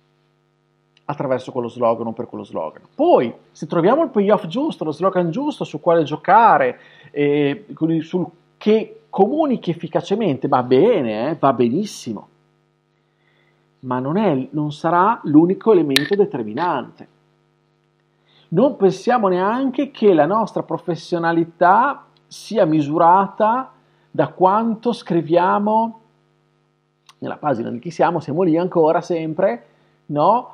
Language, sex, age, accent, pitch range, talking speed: Italian, male, 40-59, native, 155-200 Hz, 115 wpm